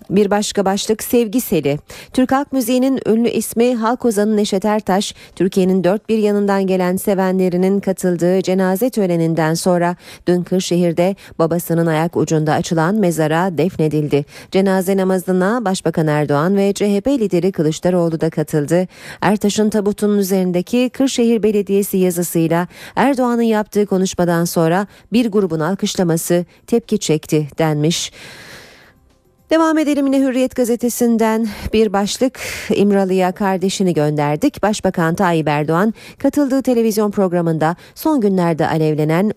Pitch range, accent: 165-225 Hz, native